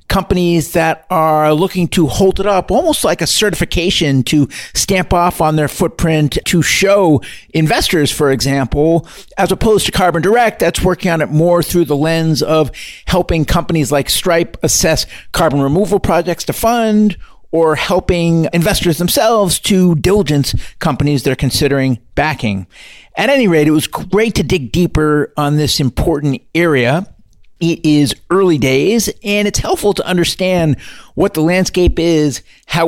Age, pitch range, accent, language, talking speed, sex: 50-69, 145-185 Hz, American, English, 155 wpm, male